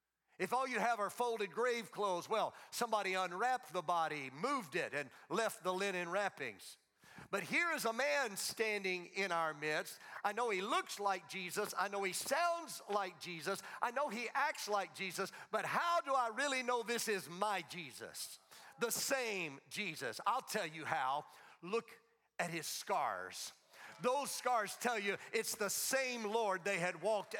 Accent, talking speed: American, 175 wpm